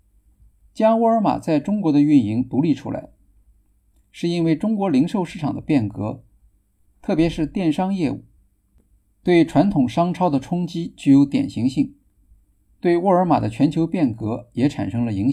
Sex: male